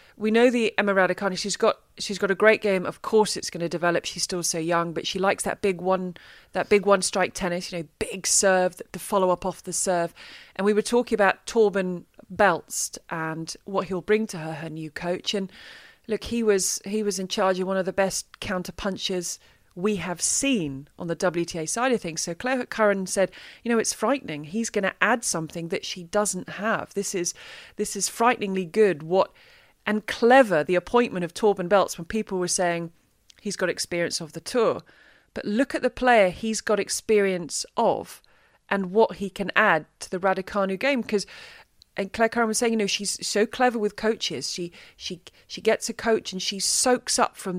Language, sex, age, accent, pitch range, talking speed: English, female, 30-49, British, 180-215 Hz, 205 wpm